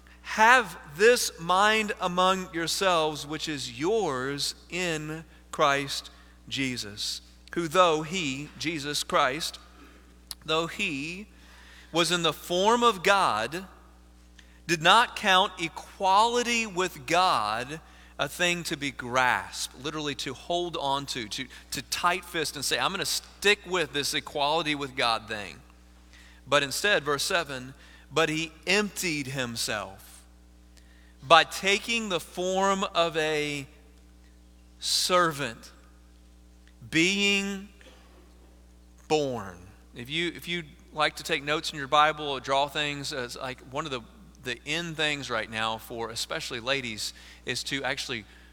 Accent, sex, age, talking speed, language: American, male, 40-59, 125 wpm, English